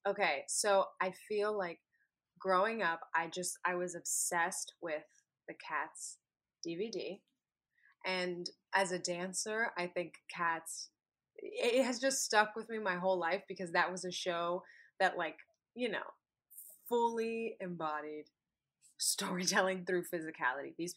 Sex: female